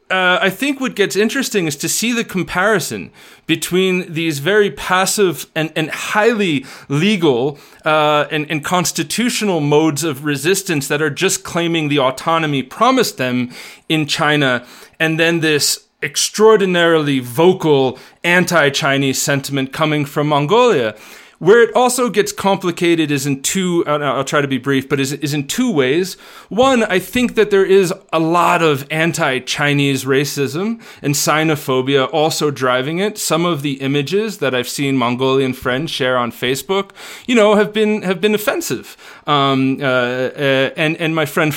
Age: 30-49